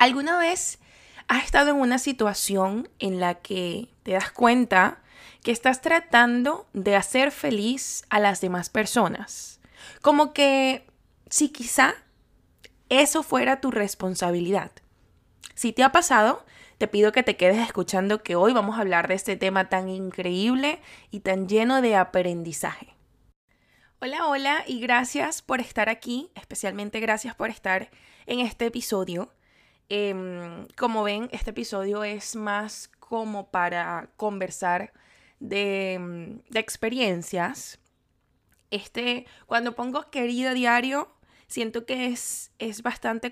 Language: Spanish